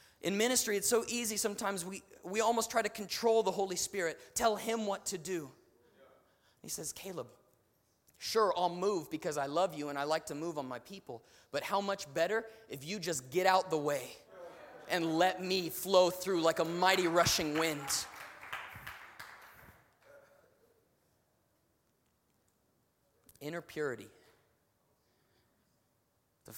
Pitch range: 145-195 Hz